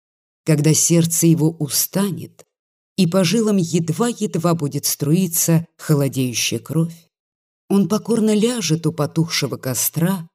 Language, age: Russian, 30-49